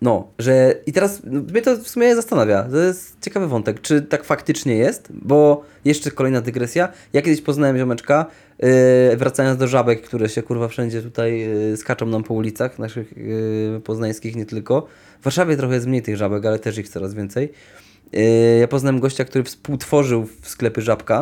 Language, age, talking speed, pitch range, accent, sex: Polish, 20-39, 185 wpm, 115-145 Hz, native, male